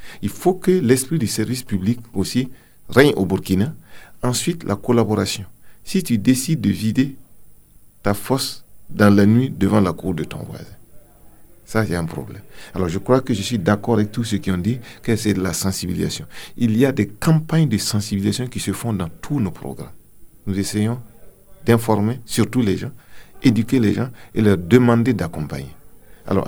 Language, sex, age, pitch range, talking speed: English, male, 50-69, 100-125 Hz, 180 wpm